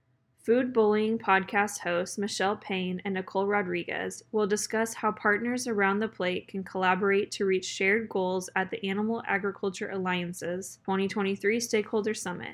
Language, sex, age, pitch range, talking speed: English, female, 10-29, 190-215 Hz, 145 wpm